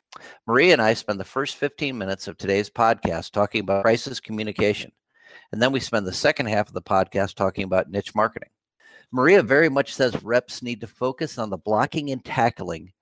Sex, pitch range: male, 100-130 Hz